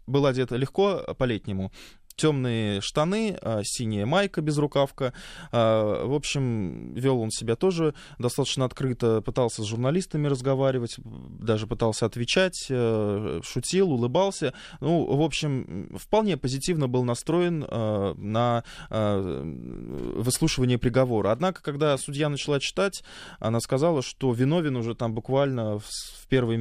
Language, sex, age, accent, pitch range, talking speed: Russian, male, 20-39, native, 110-140 Hz, 115 wpm